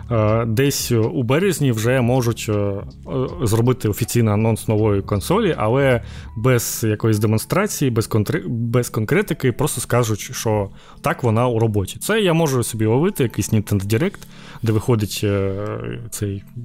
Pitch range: 105-130 Hz